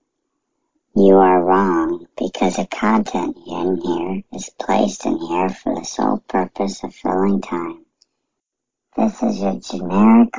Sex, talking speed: male, 135 wpm